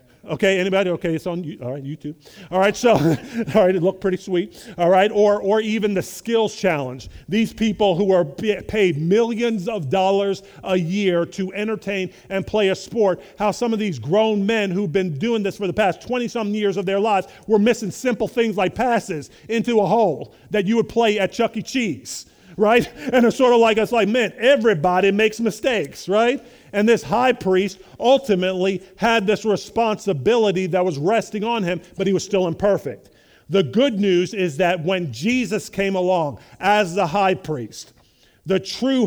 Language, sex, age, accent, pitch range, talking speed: English, male, 40-59, American, 175-215 Hz, 185 wpm